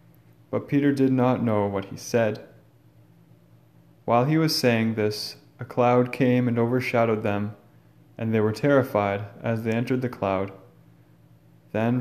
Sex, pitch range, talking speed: male, 100-125 Hz, 145 wpm